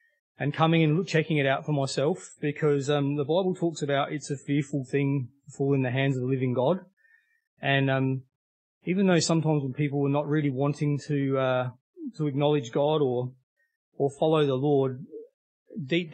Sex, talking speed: male, 180 wpm